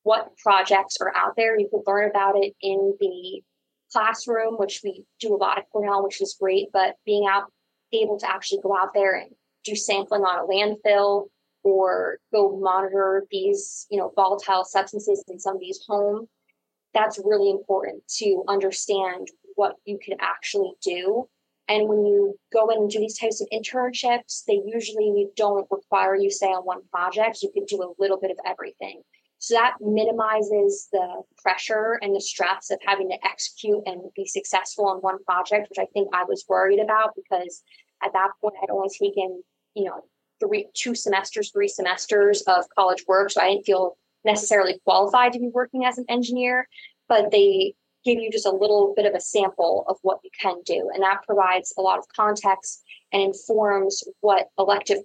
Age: 20-39